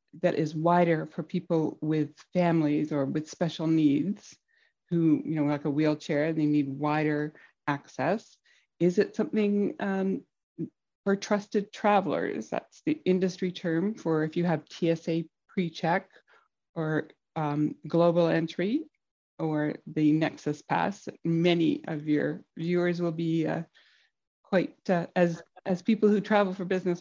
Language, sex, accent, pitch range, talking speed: English, female, American, 160-190 Hz, 140 wpm